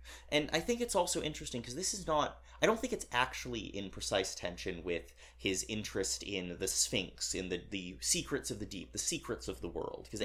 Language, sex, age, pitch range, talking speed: English, male, 30-49, 85-115 Hz, 215 wpm